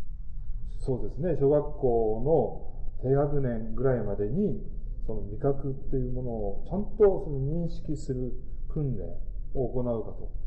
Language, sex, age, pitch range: Japanese, male, 40-59, 115-175 Hz